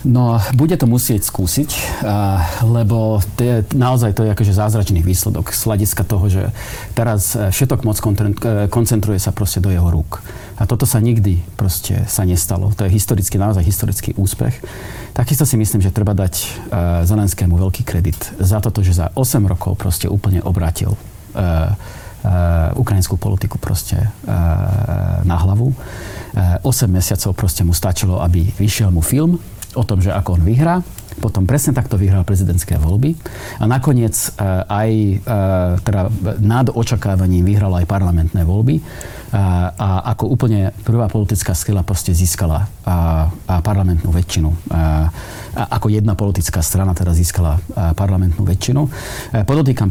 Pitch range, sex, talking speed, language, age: 90-110 Hz, male, 130 wpm, Slovak, 40-59